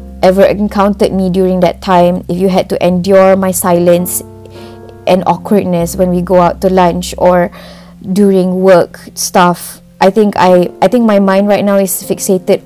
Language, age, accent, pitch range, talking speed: English, 20-39, Malaysian, 180-200 Hz, 170 wpm